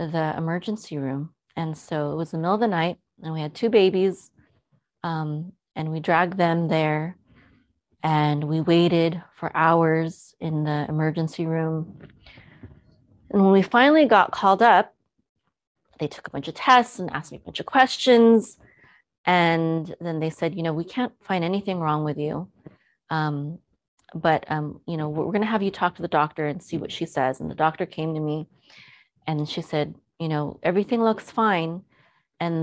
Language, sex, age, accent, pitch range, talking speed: English, female, 30-49, American, 155-185 Hz, 180 wpm